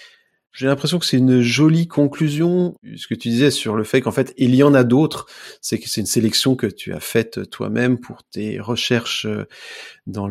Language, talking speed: French, 205 wpm